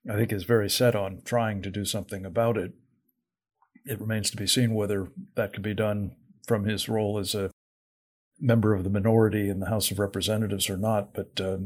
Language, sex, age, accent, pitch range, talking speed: English, male, 50-69, American, 95-120 Hz, 205 wpm